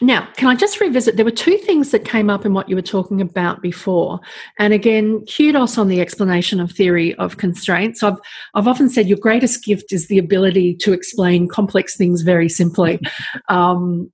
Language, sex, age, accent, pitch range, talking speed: English, female, 40-59, Australian, 175-220 Hz, 195 wpm